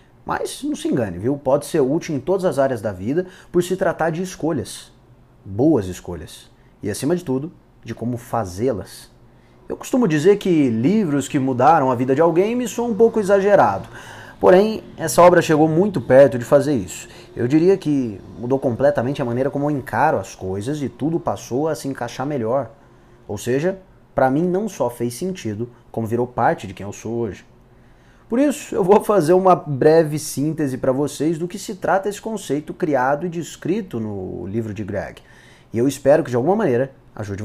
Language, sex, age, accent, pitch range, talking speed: Portuguese, male, 20-39, Brazilian, 120-180 Hz, 190 wpm